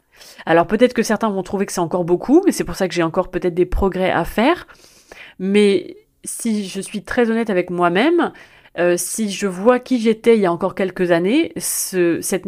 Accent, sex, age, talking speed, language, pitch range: French, female, 30-49, 210 wpm, French, 180-225 Hz